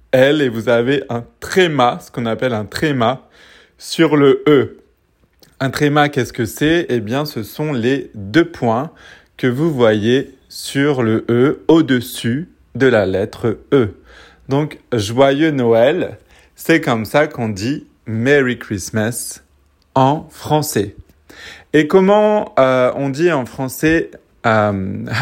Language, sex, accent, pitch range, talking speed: French, male, French, 115-145 Hz, 135 wpm